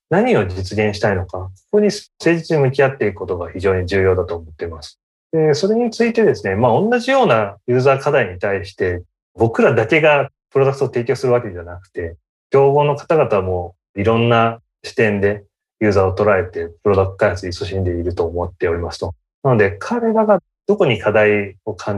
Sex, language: male, Japanese